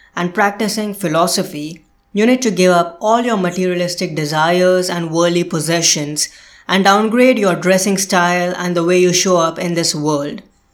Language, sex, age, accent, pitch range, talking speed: English, female, 20-39, Indian, 170-210 Hz, 160 wpm